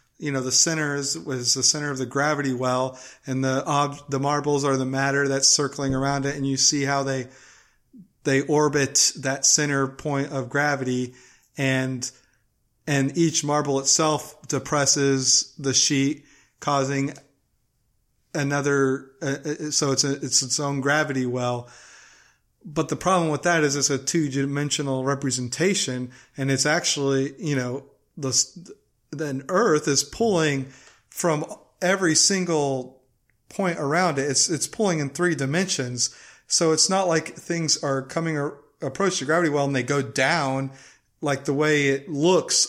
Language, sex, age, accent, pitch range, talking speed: English, male, 30-49, American, 135-155 Hz, 155 wpm